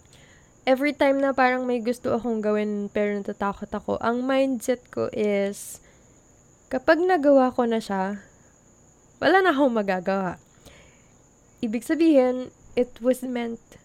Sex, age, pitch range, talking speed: female, 20-39, 210-265 Hz, 125 wpm